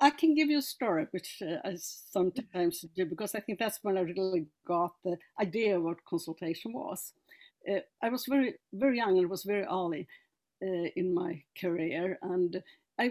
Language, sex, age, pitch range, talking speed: English, female, 60-79, 180-285 Hz, 190 wpm